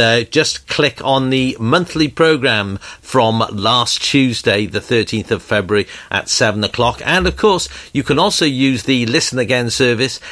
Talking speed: 165 wpm